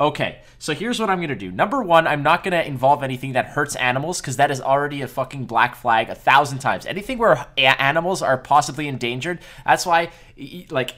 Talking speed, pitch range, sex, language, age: 215 wpm, 125-170 Hz, male, English, 20-39